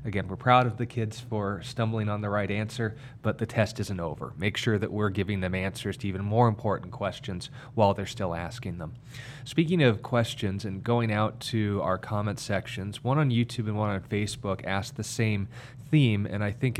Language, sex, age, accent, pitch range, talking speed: English, male, 30-49, American, 100-125 Hz, 205 wpm